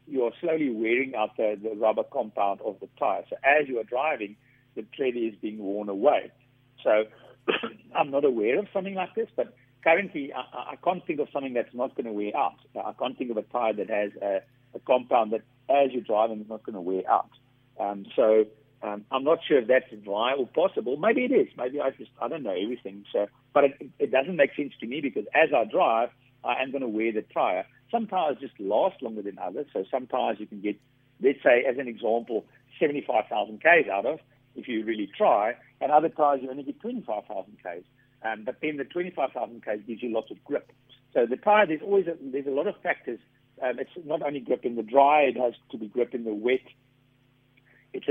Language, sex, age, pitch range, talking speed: English, male, 60-79, 110-140 Hz, 220 wpm